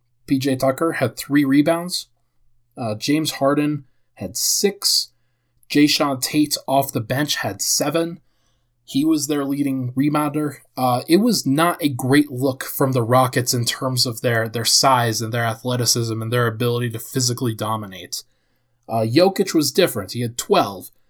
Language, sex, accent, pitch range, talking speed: English, male, American, 120-150 Hz, 155 wpm